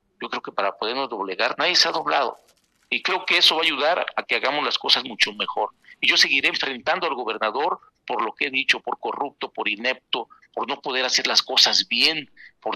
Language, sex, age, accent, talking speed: Spanish, male, 50-69, Mexican, 220 wpm